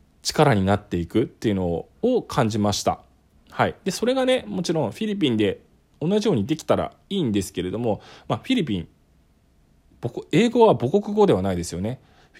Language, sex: Japanese, male